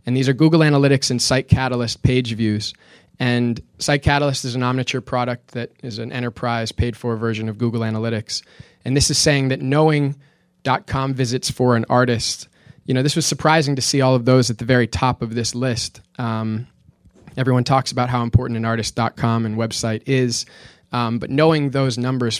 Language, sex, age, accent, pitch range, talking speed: English, male, 20-39, American, 115-130 Hz, 190 wpm